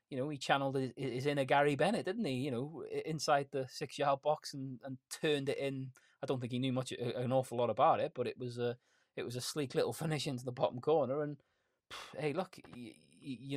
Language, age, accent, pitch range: English, 20-39, British, 110-130 Hz